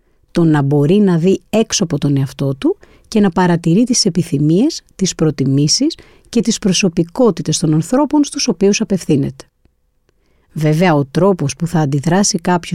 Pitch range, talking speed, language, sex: 155-220 Hz, 150 wpm, Greek, female